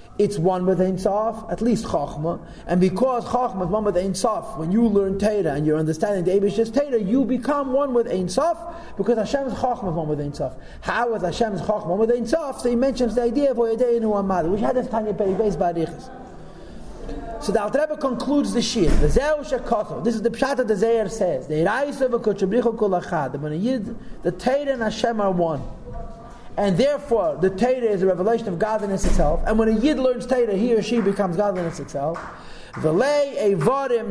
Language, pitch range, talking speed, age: English, 195-255 Hz, 190 wpm, 40-59